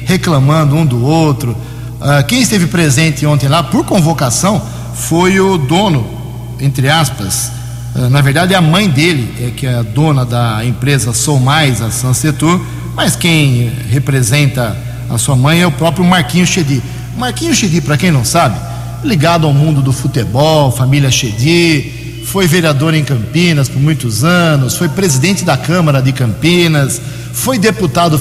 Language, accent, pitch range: Portuguese, Brazilian, 130-170 Hz